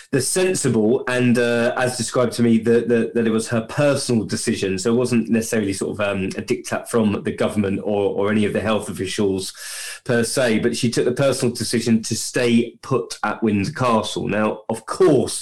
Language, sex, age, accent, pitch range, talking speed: English, male, 20-39, British, 105-120 Hz, 200 wpm